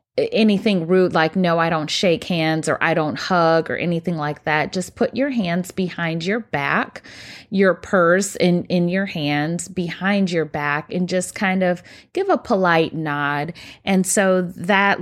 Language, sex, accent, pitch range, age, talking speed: English, female, American, 170-220 Hz, 20-39, 170 wpm